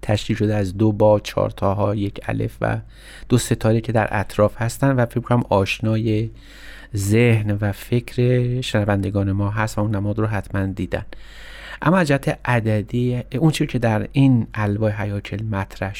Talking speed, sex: 155 wpm, male